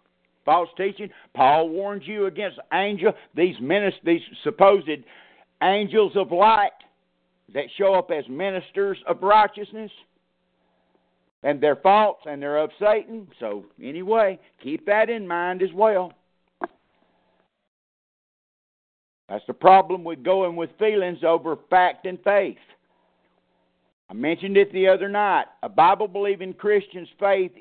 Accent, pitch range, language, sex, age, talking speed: American, 170-215 Hz, English, male, 60-79, 125 wpm